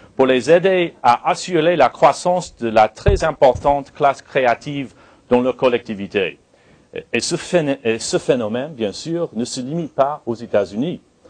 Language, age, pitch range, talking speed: French, 40-59, 115-165 Hz, 145 wpm